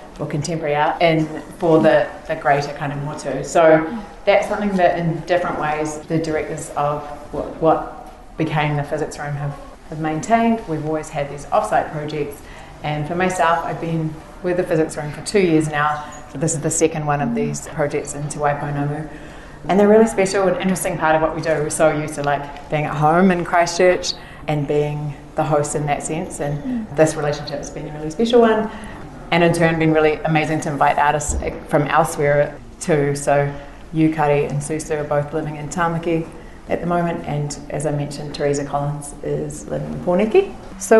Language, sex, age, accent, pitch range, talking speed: English, female, 30-49, Australian, 145-165 Hz, 195 wpm